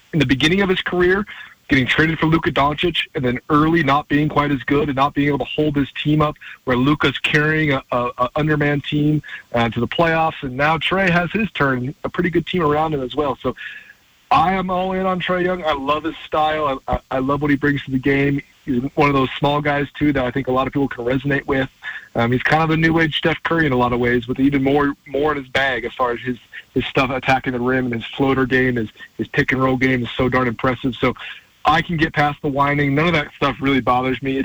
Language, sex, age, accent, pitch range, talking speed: English, male, 30-49, American, 130-155 Hz, 255 wpm